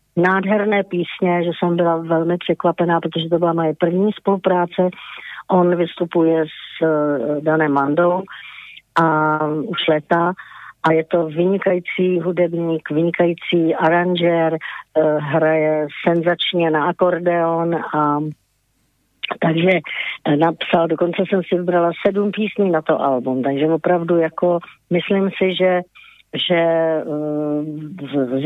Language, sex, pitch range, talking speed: Slovak, female, 155-180 Hz, 120 wpm